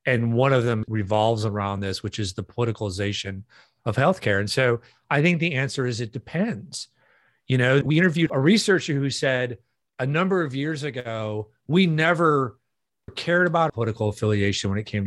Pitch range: 110-150 Hz